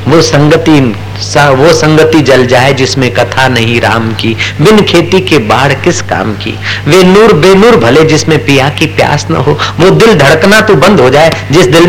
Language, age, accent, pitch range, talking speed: Hindi, 50-69, native, 105-140 Hz, 190 wpm